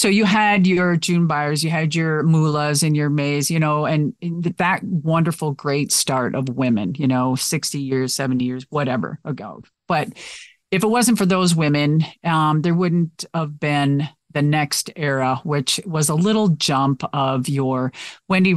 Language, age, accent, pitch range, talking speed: English, 40-59, American, 140-170 Hz, 170 wpm